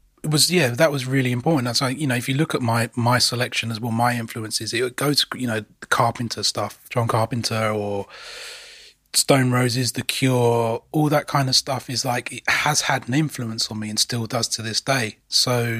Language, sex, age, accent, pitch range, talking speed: English, male, 30-49, British, 115-135 Hz, 215 wpm